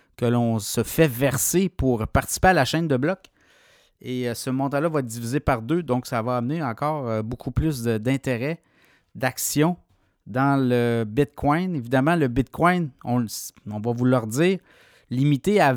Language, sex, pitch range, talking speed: French, male, 125-160 Hz, 165 wpm